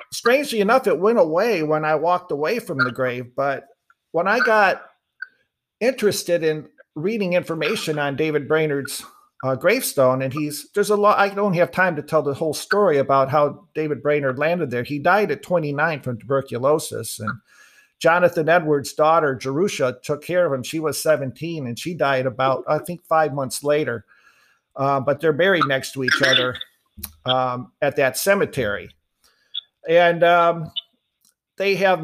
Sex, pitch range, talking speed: male, 135-170 Hz, 165 wpm